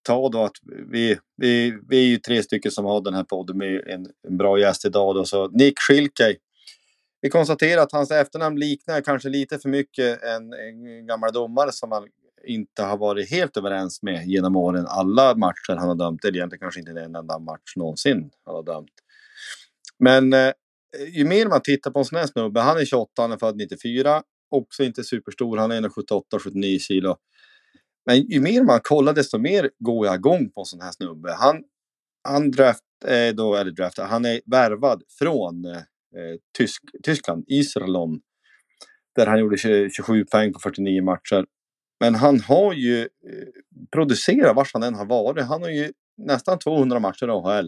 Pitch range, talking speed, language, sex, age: 100-140 Hz, 180 wpm, Swedish, male, 30-49